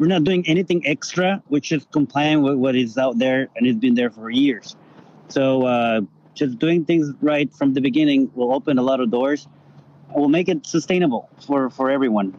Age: 30-49